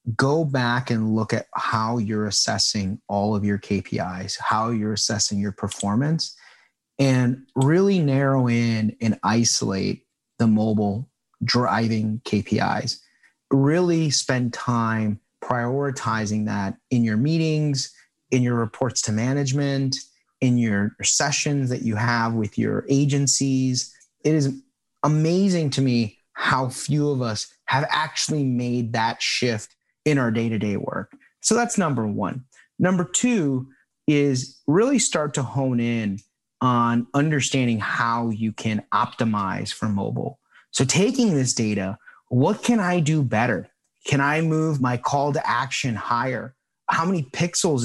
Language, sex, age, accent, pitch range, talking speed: English, male, 30-49, American, 110-140 Hz, 135 wpm